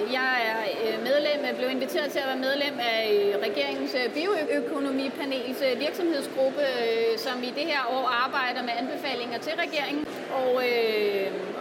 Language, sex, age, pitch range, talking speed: Danish, female, 30-49, 245-295 Hz, 125 wpm